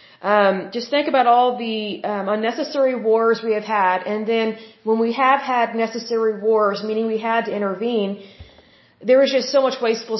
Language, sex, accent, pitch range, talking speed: Hindi, female, American, 210-250 Hz, 180 wpm